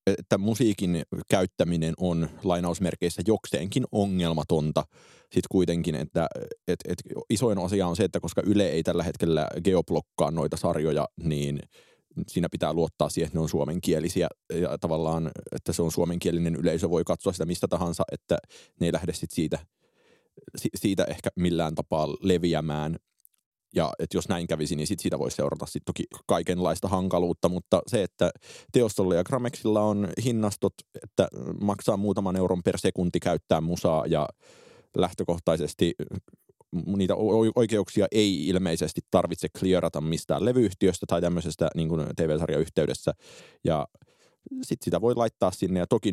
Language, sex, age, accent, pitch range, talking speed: Finnish, male, 30-49, native, 80-100 Hz, 140 wpm